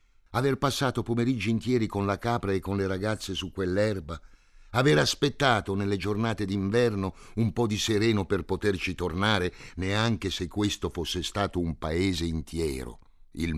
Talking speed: 150 wpm